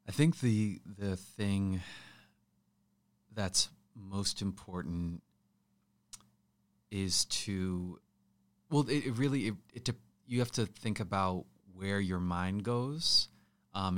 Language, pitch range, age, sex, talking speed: English, 90-105 Hz, 30-49, male, 115 wpm